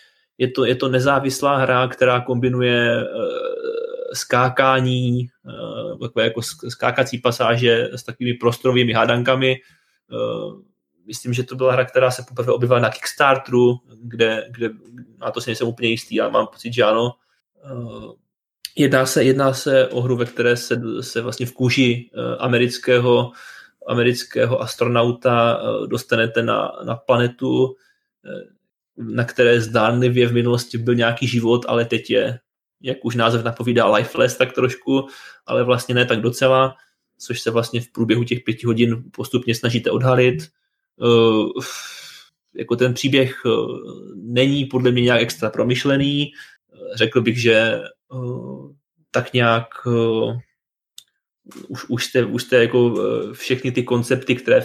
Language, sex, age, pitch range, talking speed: Czech, male, 20-39, 120-130 Hz, 135 wpm